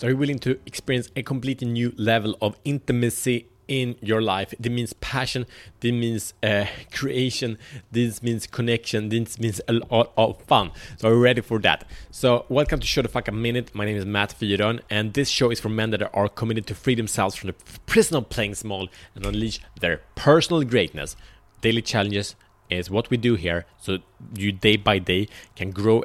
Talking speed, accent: 200 wpm, Norwegian